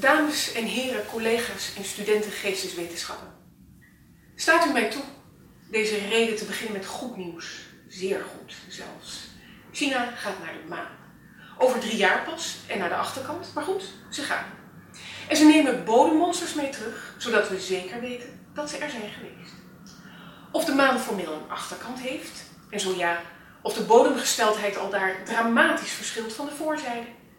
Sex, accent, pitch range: female, Dutch, 195-265 Hz